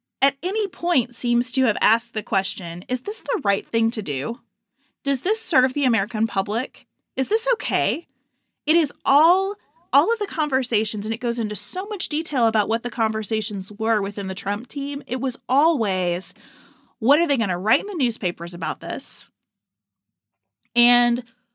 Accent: American